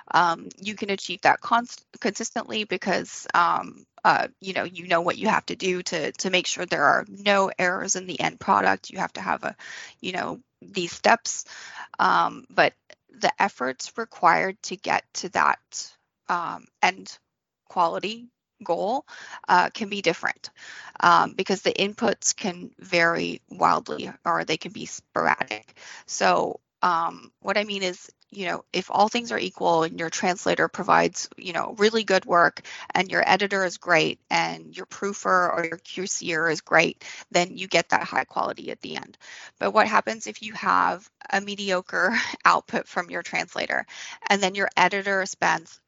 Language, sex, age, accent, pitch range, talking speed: English, female, 20-39, American, 170-200 Hz, 170 wpm